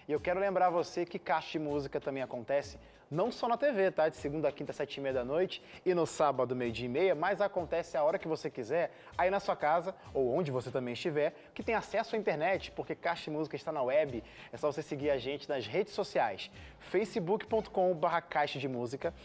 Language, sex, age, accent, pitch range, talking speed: Portuguese, male, 20-39, Brazilian, 150-190 Hz, 225 wpm